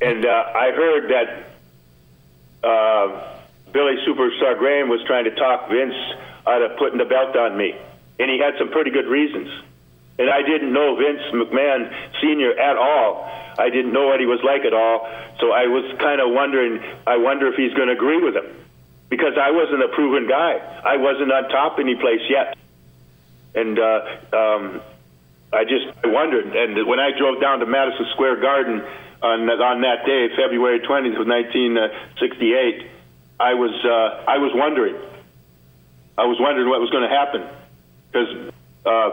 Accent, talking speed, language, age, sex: American, 170 wpm, English, 50-69, male